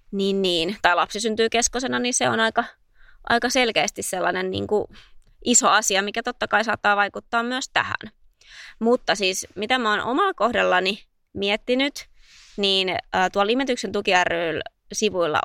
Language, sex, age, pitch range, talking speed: Finnish, female, 20-39, 185-235 Hz, 145 wpm